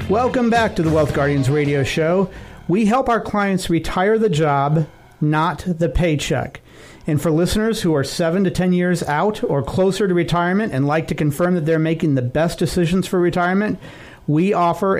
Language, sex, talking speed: English, male, 185 wpm